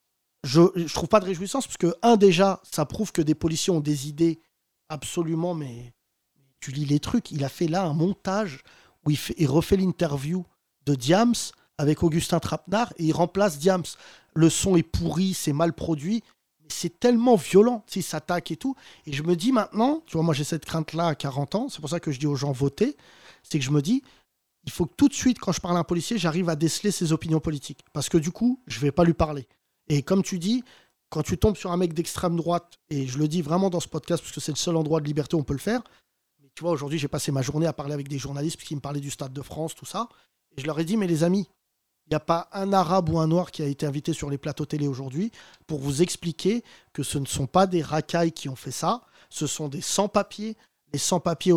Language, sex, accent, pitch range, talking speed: French, male, French, 150-185 Hz, 250 wpm